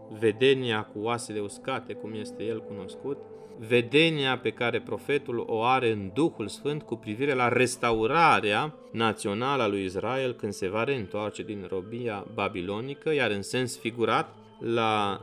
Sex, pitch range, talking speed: male, 105-140 Hz, 145 wpm